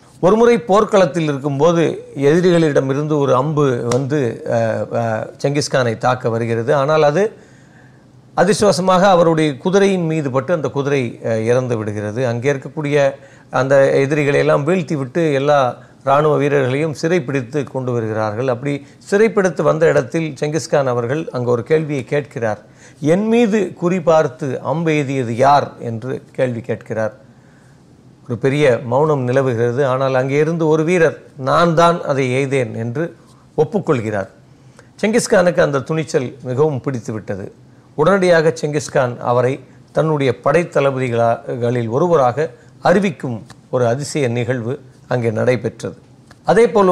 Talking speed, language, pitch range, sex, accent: 110 wpm, Tamil, 125-155 Hz, male, native